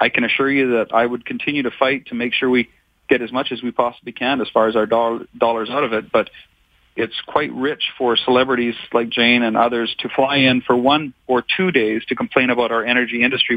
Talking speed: 235 wpm